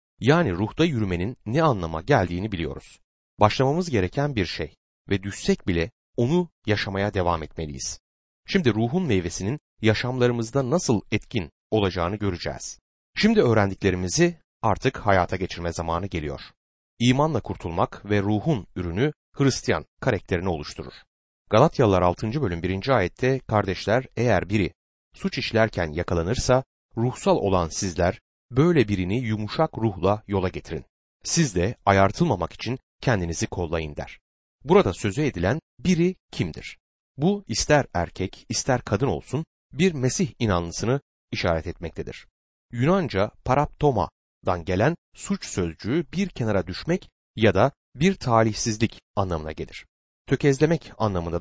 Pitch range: 90-135 Hz